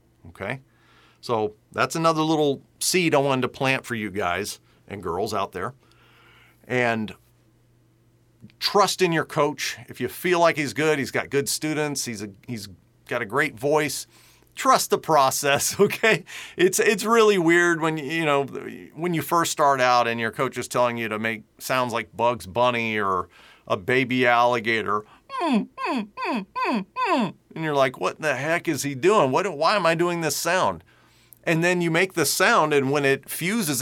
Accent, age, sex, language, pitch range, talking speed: American, 40-59, male, English, 120-170 Hz, 180 wpm